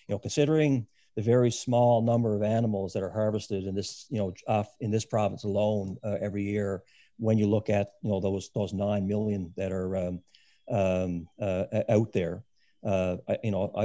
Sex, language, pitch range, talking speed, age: male, English, 100-115 Hz, 190 wpm, 50-69